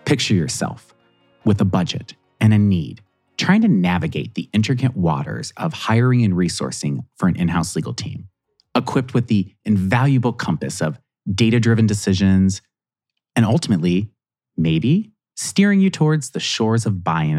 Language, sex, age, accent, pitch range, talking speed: English, male, 30-49, American, 95-130 Hz, 140 wpm